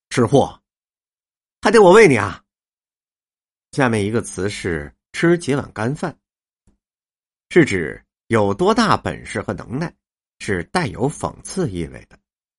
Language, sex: Chinese, male